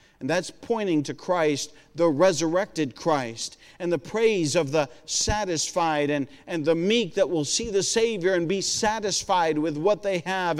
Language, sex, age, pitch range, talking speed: English, male, 50-69, 160-215 Hz, 170 wpm